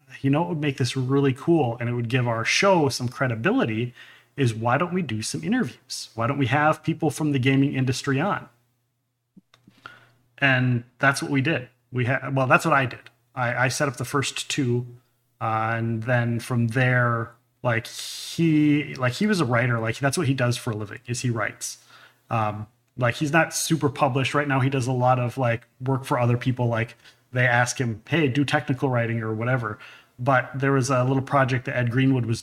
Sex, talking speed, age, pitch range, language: male, 210 wpm, 30-49, 115-135 Hz, English